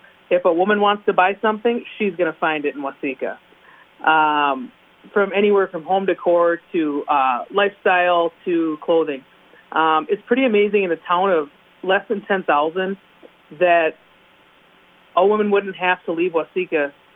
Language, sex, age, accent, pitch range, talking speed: English, female, 30-49, American, 160-200 Hz, 155 wpm